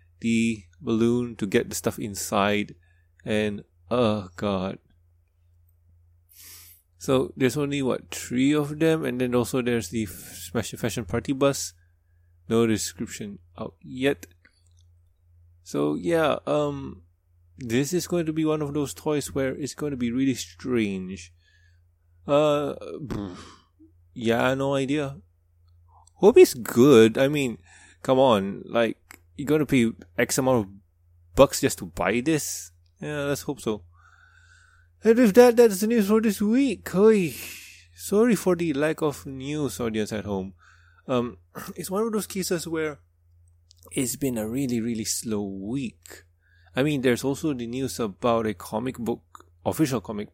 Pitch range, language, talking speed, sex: 85-135 Hz, English, 145 wpm, male